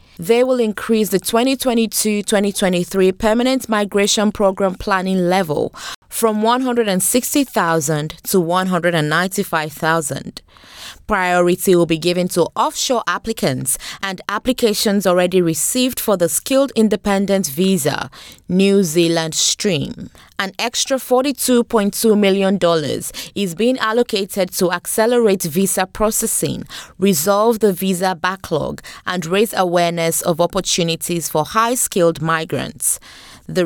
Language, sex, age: English, female, 20-39